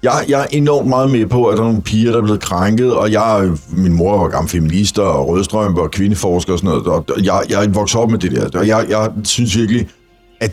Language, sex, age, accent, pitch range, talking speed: Danish, male, 60-79, native, 100-135 Hz, 245 wpm